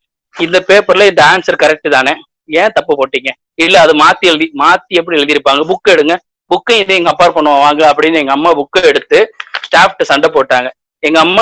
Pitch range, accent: 160-220 Hz, native